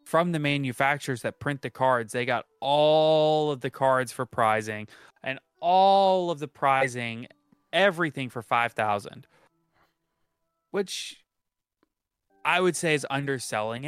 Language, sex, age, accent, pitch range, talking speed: English, male, 20-39, American, 115-145 Hz, 125 wpm